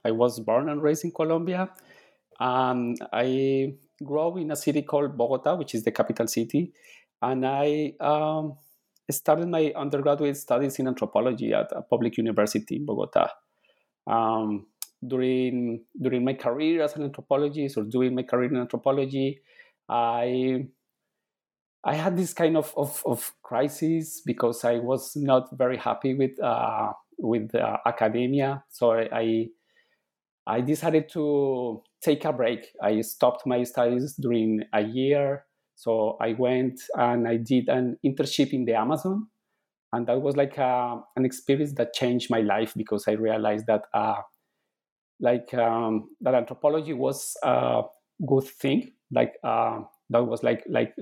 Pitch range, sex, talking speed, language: 120-150 Hz, male, 150 wpm, English